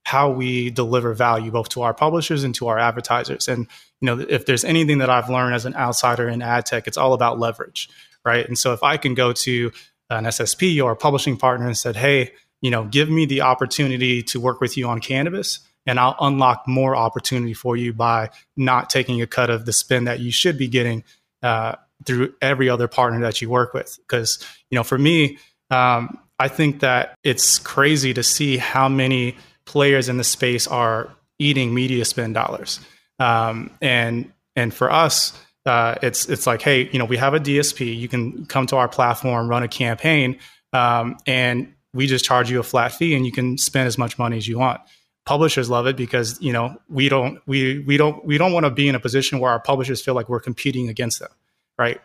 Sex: male